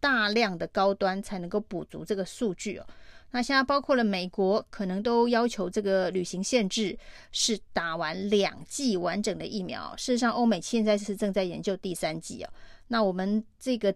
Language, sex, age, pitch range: Chinese, female, 30-49, 195-230 Hz